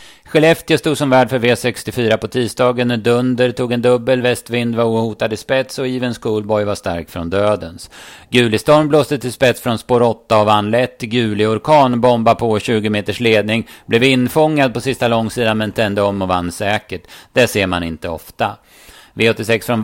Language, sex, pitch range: Swedish, male, 110-125 Hz